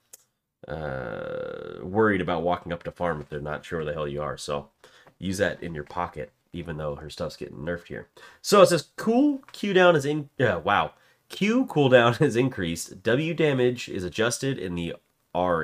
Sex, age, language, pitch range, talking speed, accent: male, 30-49, English, 90-135 Hz, 190 wpm, American